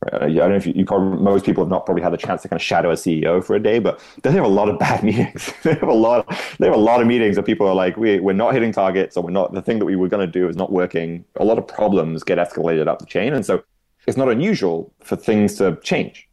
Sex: male